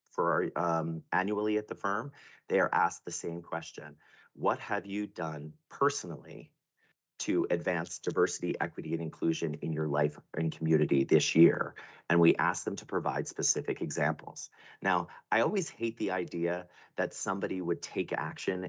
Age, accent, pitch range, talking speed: 30-49, American, 80-110 Hz, 155 wpm